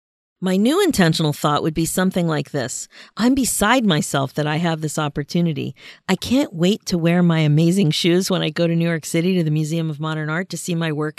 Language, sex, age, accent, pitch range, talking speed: English, female, 40-59, American, 155-220 Hz, 225 wpm